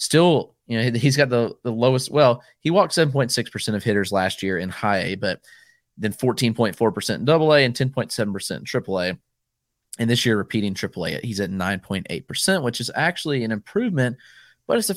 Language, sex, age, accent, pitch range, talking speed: English, male, 30-49, American, 105-130 Hz, 235 wpm